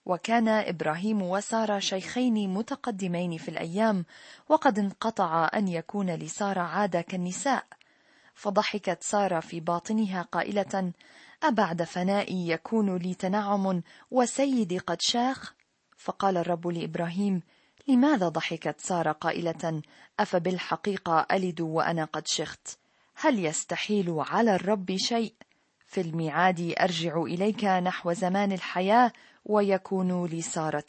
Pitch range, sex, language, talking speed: 170-215 Hz, female, Arabic, 105 wpm